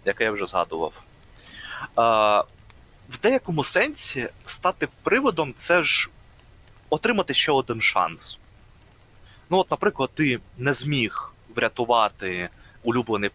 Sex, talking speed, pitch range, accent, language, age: male, 110 wpm, 110-165 Hz, native, Ukrainian, 30-49